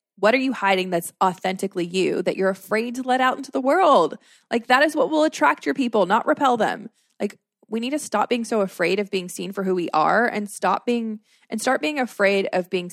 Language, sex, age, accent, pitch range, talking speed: English, female, 20-39, American, 185-250 Hz, 235 wpm